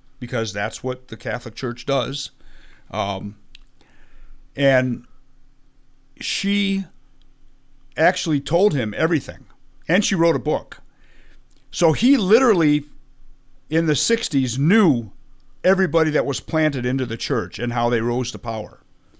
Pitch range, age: 130-155 Hz, 50-69